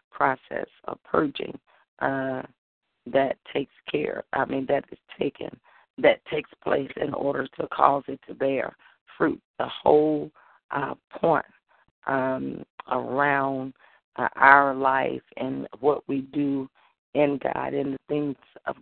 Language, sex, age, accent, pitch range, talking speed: English, female, 40-59, American, 135-145 Hz, 135 wpm